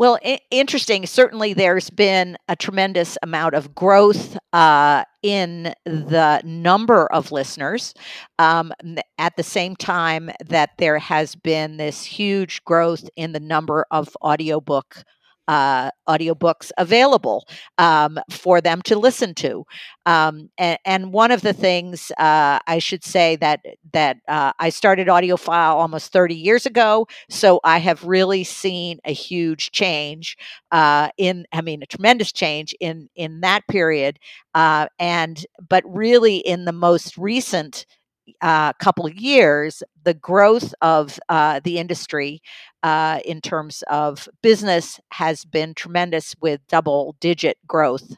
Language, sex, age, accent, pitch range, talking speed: English, female, 50-69, American, 155-190 Hz, 140 wpm